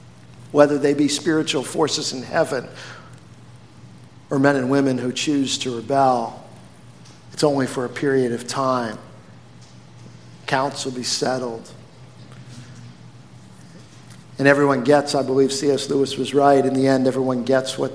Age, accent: 50-69, American